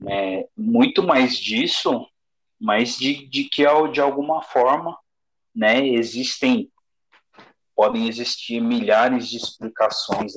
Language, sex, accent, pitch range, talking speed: Portuguese, male, Brazilian, 110-140 Hz, 100 wpm